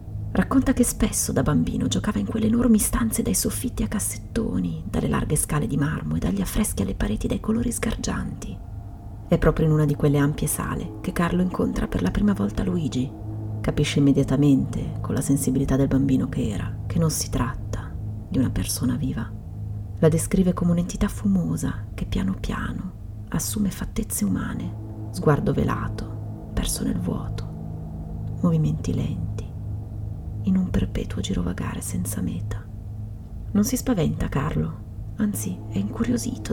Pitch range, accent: 95-125 Hz, native